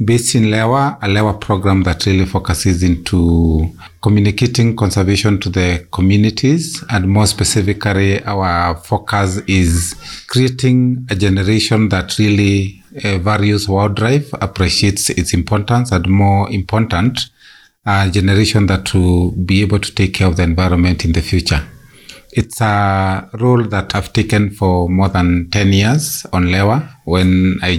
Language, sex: English, male